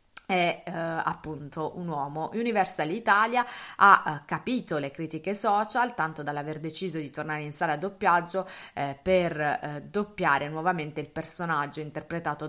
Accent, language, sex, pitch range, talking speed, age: native, Italian, female, 145-175 Hz, 145 wpm, 30-49